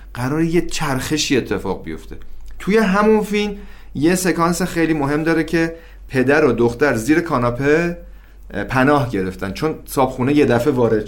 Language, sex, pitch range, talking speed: Persian, male, 110-155 Hz, 140 wpm